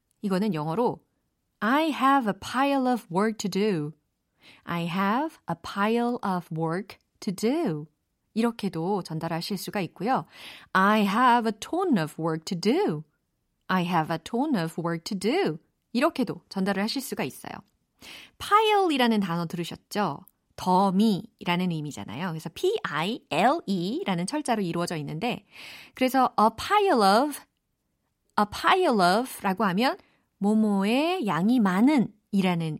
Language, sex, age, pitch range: Korean, female, 40-59, 175-260 Hz